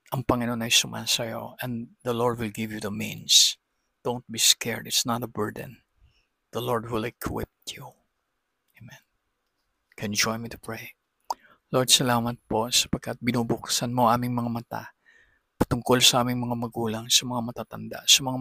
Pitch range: 115-125 Hz